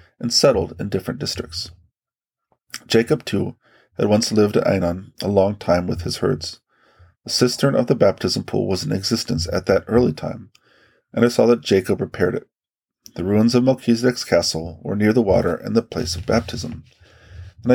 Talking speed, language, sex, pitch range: 180 wpm, English, male, 95-120 Hz